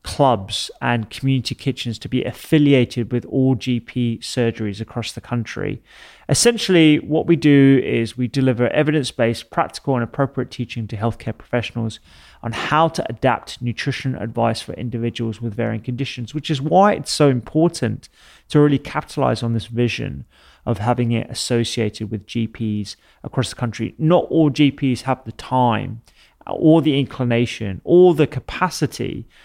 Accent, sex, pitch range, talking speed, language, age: British, male, 115-135 Hz, 150 wpm, English, 30-49